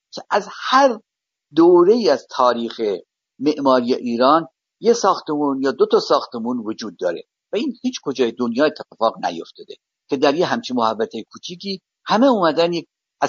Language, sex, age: Persian, male, 50-69